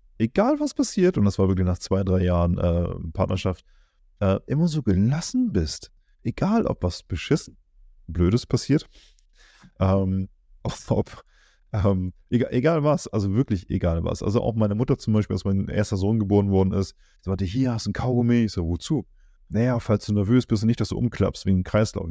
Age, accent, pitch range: 30-49, German, 90-110 Hz